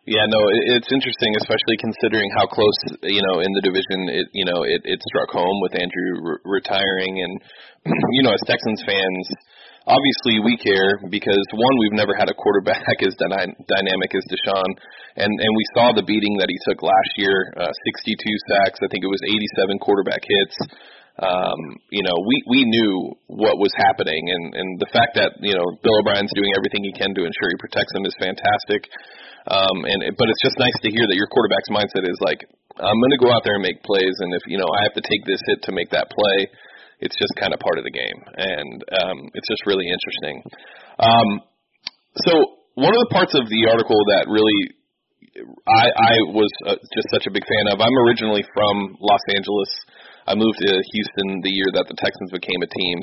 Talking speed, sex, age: 210 wpm, male, 20-39